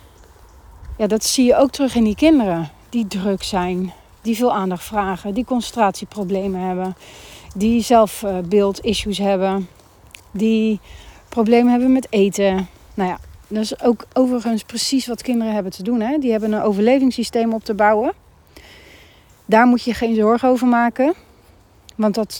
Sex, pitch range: female, 195-240 Hz